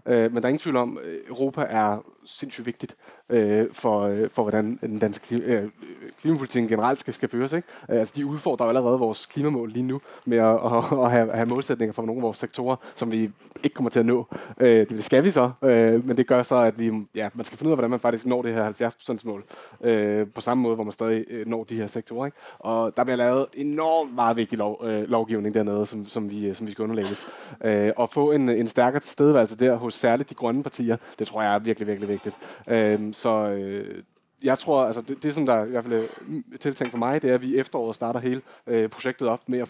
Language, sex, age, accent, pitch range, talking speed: Danish, male, 20-39, native, 110-125 Hz, 210 wpm